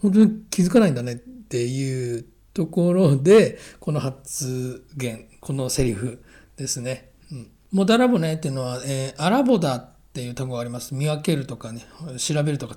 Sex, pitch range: male, 130-185 Hz